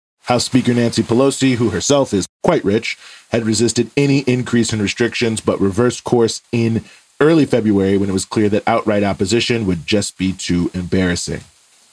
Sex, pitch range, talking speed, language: male, 105-125 Hz, 165 wpm, English